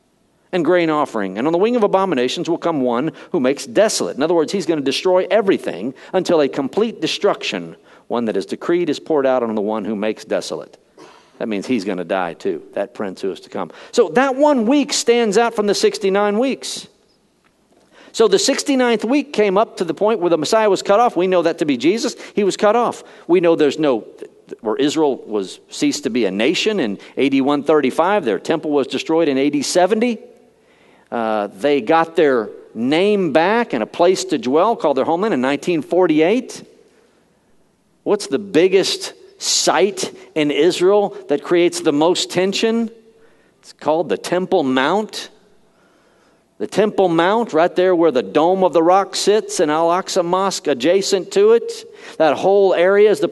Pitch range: 165-220 Hz